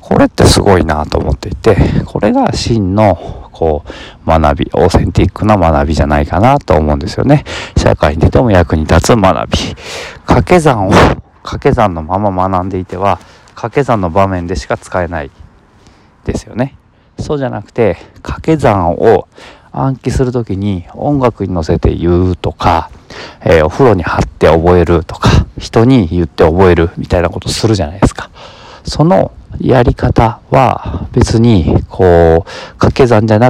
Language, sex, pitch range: Japanese, male, 80-110 Hz